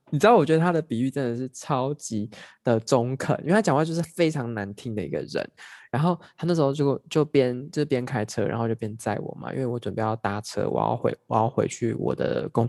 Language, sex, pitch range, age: Chinese, male, 120-160 Hz, 20-39